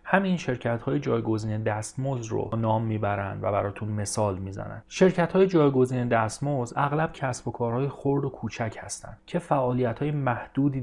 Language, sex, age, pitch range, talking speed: Persian, male, 30-49, 115-145 Hz, 140 wpm